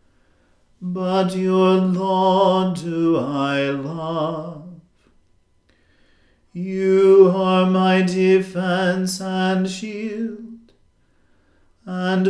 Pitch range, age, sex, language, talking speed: 165-190 Hz, 40-59, male, English, 65 wpm